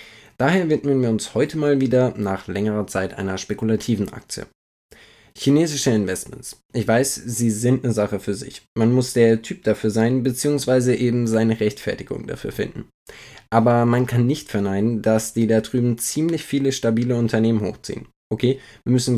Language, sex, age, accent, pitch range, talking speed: German, male, 20-39, German, 110-130 Hz, 165 wpm